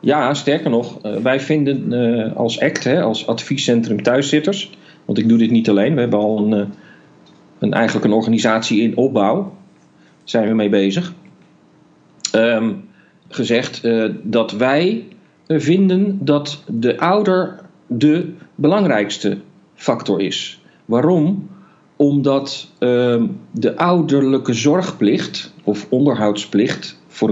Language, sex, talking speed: Dutch, male, 105 wpm